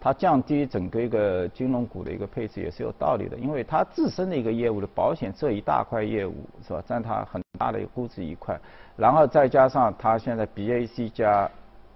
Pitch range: 105-135 Hz